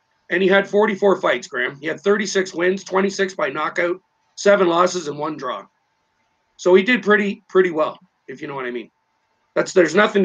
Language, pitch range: English, 155-195 Hz